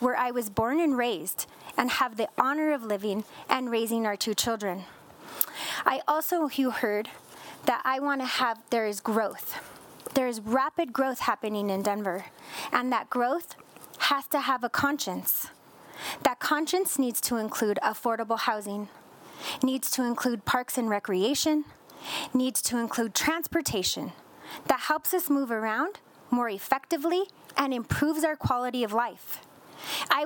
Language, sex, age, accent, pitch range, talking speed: English, female, 20-39, American, 230-295 Hz, 145 wpm